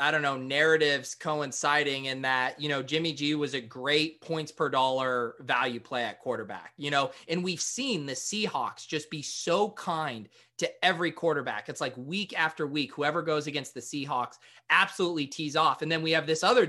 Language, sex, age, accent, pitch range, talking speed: English, male, 30-49, American, 140-170 Hz, 195 wpm